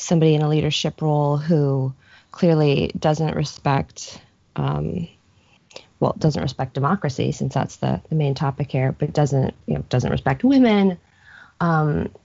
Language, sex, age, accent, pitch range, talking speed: English, female, 20-39, American, 135-155 Hz, 140 wpm